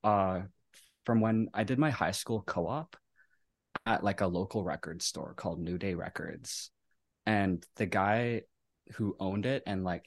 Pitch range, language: 90-110 Hz, English